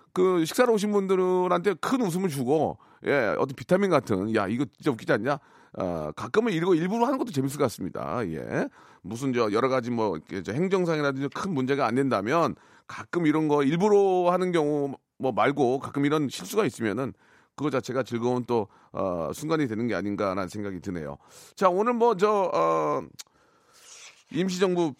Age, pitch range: 40-59, 100-165 Hz